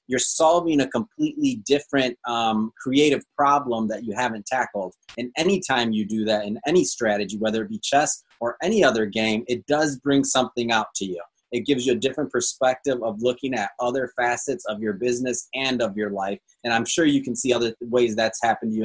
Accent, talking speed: American, 205 wpm